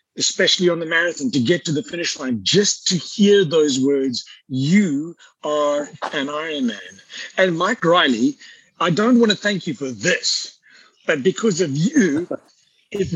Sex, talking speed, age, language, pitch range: male, 160 wpm, 50-69, English, 145-230 Hz